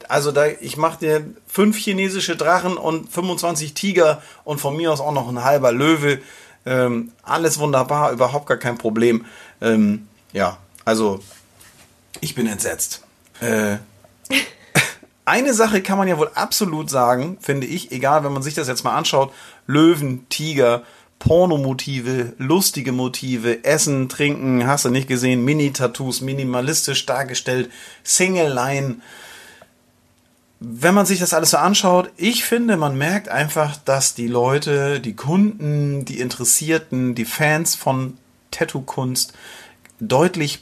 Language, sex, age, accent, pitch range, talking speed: German, male, 40-59, German, 120-155 Hz, 135 wpm